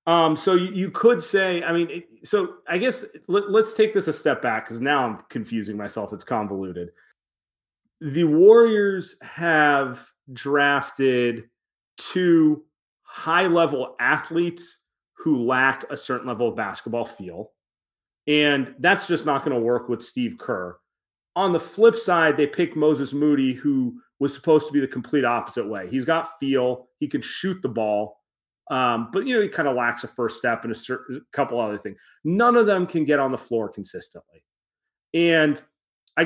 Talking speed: 170 wpm